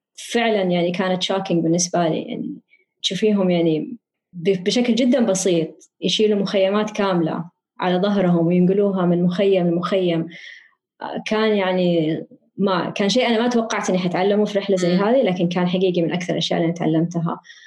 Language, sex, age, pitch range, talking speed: Arabic, female, 20-39, 180-245 Hz, 145 wpm